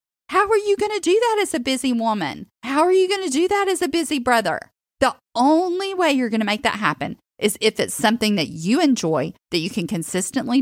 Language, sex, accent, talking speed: English, female, American, 235 wpm